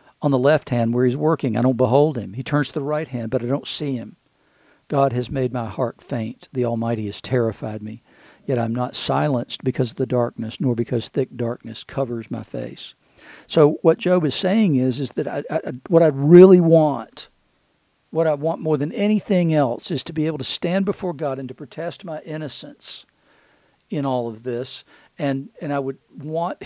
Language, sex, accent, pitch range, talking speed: English, male, American, 125-150 Hz, 205 wpm